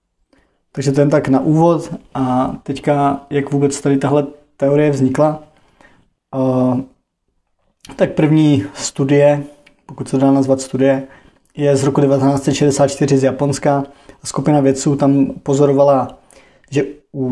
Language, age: Czech, 20-39